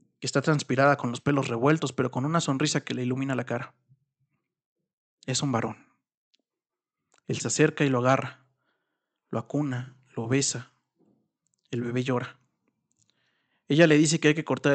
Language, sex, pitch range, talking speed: Spanish, male, 130-150 Hz, 160 wpm